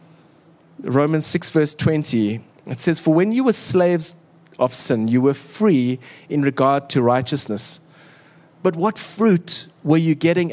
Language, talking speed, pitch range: English, 150 wpm, 135-165 Hz